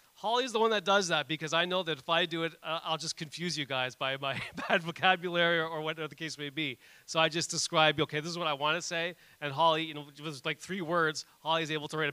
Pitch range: 145-170 Hz